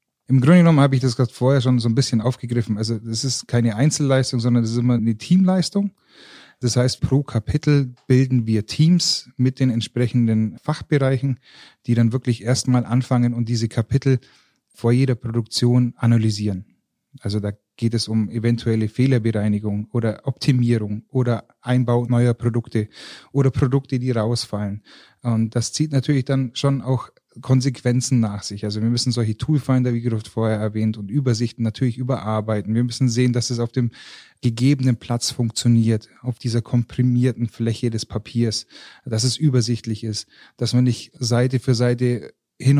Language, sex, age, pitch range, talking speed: German, male, 30-49, 115-130 Hz, 160 wpm